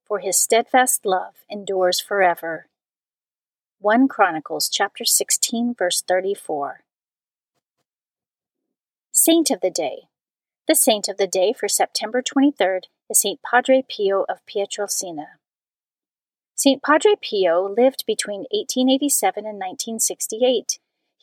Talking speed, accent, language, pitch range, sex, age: 105 wpm, American, English, 195-260 Hz, female, 40-59